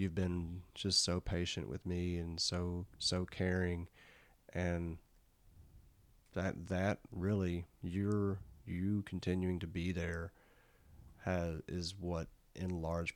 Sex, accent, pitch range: male, American, 85-95 Hz